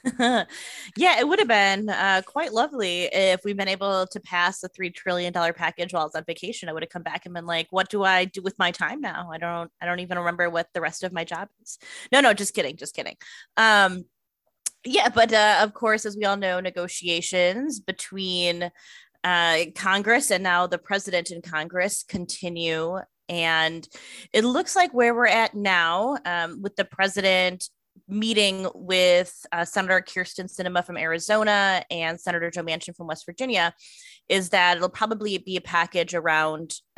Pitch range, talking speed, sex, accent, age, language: 170-215 Hz, 185 wpm, female, American, 20-39, English